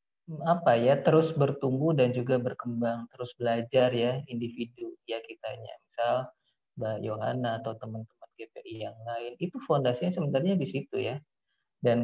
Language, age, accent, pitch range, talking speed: Indonesian, 30-49, native, 115-140 Hz, 140 wpm